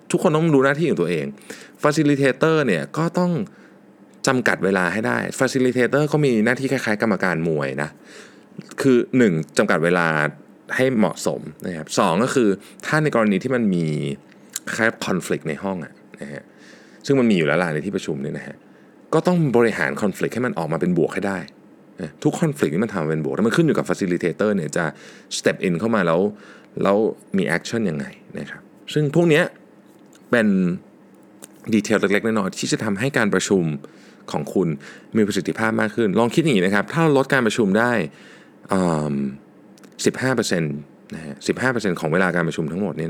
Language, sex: Thai, male